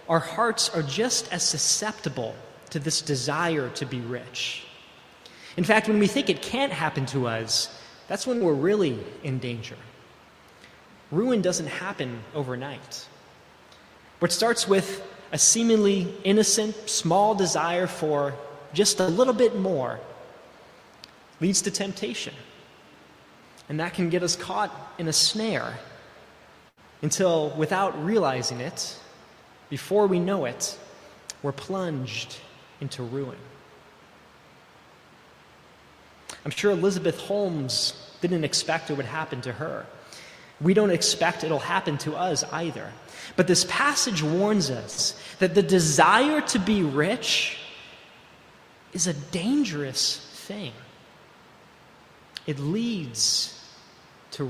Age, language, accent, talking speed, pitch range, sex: 20-39, English, American, 120 wpm, 145-200 Hz, male